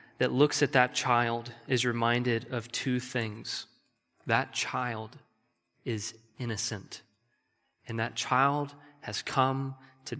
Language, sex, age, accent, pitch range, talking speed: English, male, 20-39, American, 115-140 Hz, 120 wpm